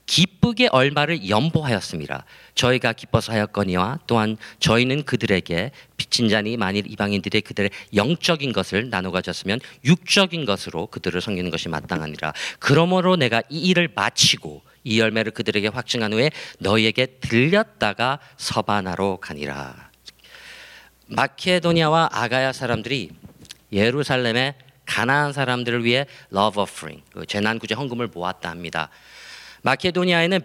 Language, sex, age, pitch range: Korean, male, 40-59, 100-140 Hz